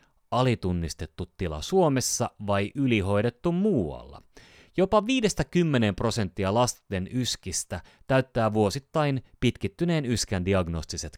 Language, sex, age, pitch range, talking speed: Finnish, male, 30-49, 90-130 Hz, 85 wpm